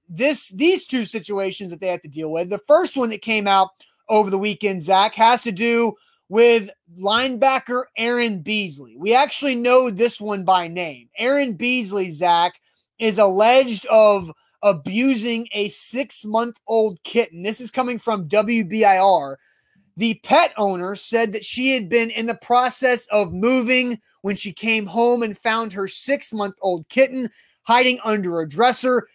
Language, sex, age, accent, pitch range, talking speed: English, male, 30-49, American, 195-240 Hz, 155 wpm